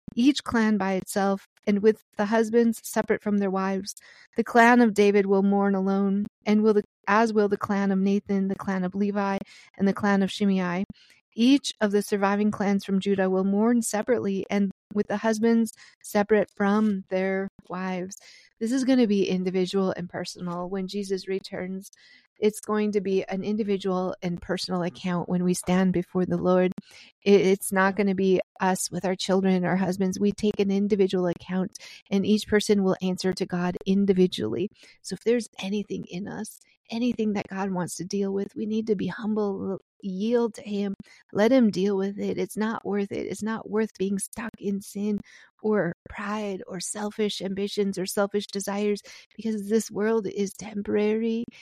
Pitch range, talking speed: 190-215 Hz, 180 wpm